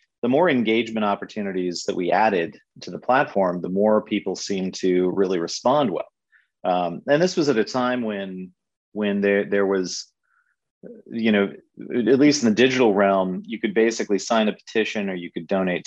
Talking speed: 180 wpm